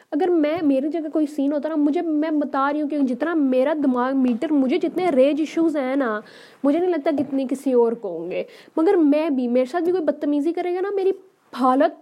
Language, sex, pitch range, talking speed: Urdu, female, 265-345 Hz, 230 wpm